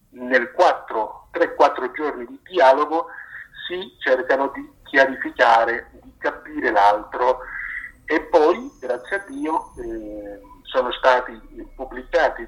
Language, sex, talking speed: Italian, male, 100 wpm